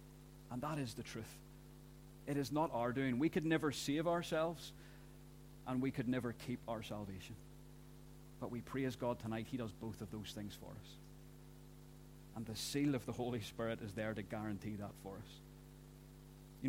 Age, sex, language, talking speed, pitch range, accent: 40-59, male, English, 180 wpm, 115-140 Hz, British